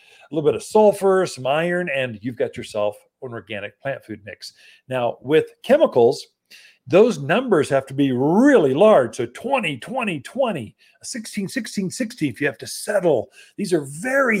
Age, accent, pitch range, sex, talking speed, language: 50-69, American, 130-210 Hz, male, 170 wpm, English